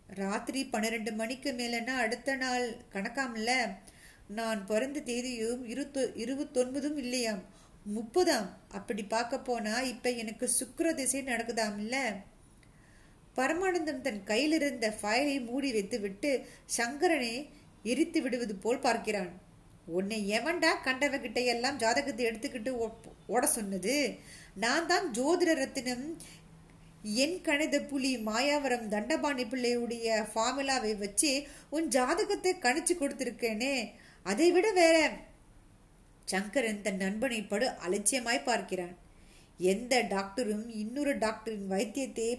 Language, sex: Tamil, female